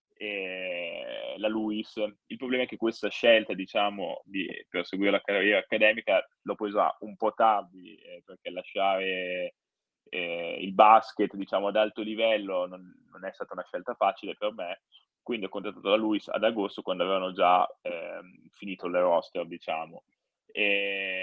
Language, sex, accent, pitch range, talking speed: Italian, male, native, 95-115 Hz, 155 wpm